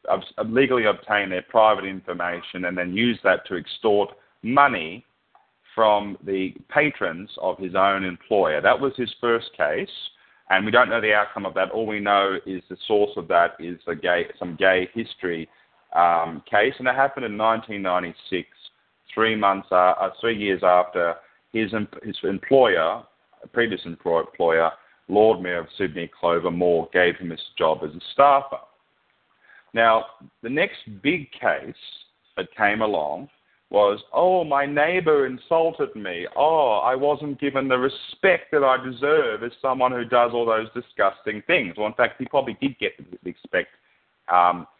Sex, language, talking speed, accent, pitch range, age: male, English, 160 wpm, Australian, 90-125 Hz, 30-49